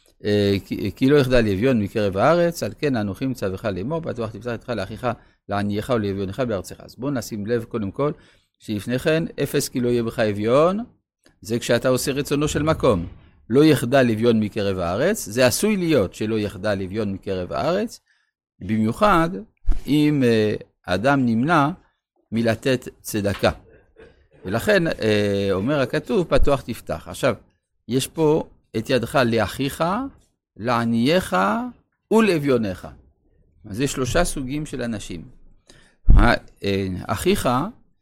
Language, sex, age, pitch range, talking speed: Hebrew, male, 50-69, 105-145 Hz, 120 wpm